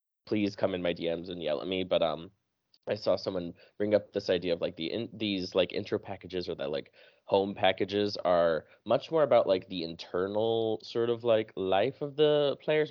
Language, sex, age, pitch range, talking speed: English, male, 20-39, 95-140 Hz, 210 wpm